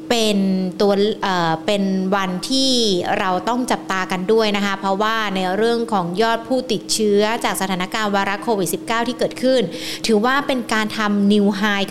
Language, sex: Thai, female